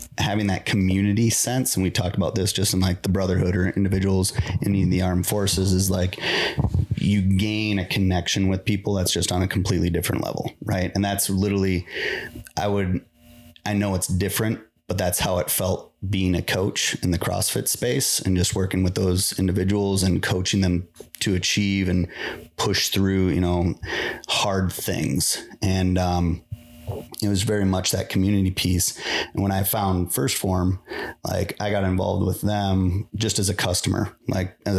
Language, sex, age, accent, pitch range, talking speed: English, male, 30-49, American, 90-100 Hz, 180 wpm